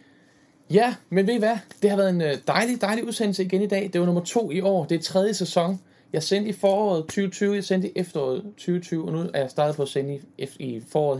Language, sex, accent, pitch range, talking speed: Danish, male, native, 140-190 Hz, 240 wpm